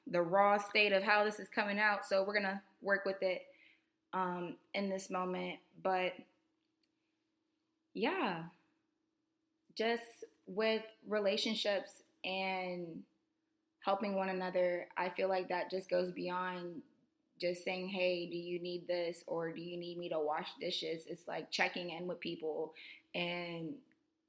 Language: English